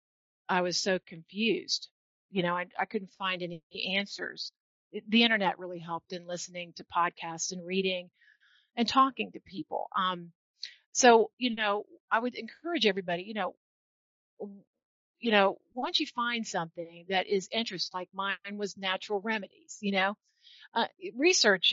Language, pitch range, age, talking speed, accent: English, 185-235 Hz, 40-59, 150 wpm, American